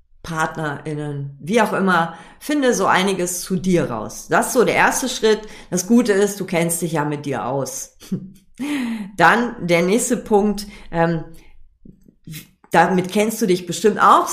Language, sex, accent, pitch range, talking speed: German, female, German, 155-200 Hz, 155 wpm